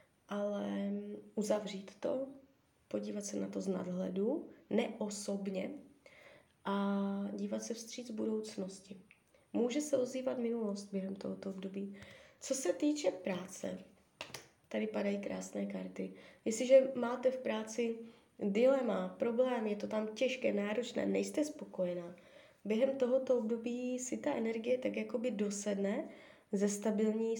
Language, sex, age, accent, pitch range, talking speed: Czech, female, 20-39, native, 200-245 Hz, 115 wpm